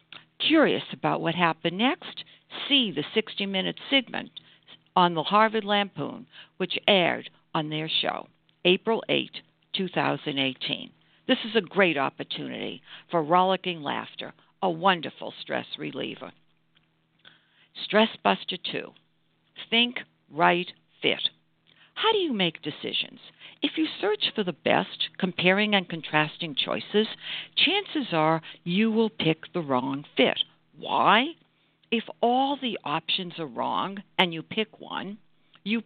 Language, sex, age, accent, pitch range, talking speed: English, female, 60-79, American, 155-225 Hz, 120 wpm